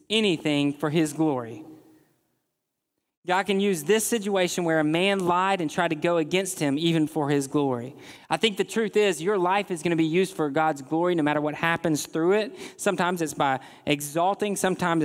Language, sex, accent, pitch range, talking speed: English, male, American, 135-175 Hz, 190 wpm